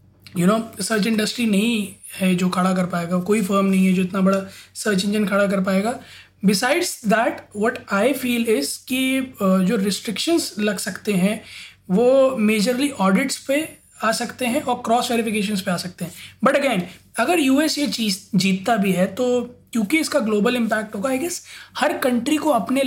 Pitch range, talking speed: 195-255 Hz, 185 wpm